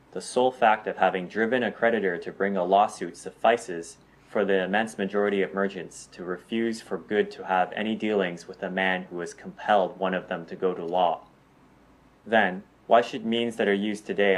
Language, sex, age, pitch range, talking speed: English, male, 20-39, 95-115 Hz, 200 wpm